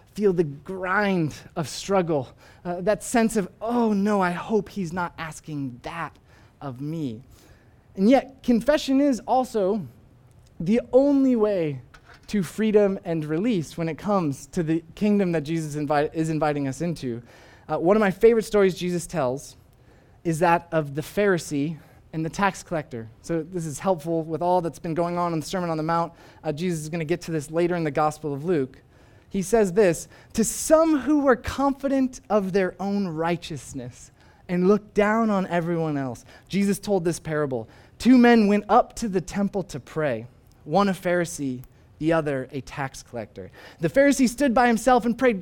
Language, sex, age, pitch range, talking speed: English, male, 20-39, 155-235 Hz, 180 wpm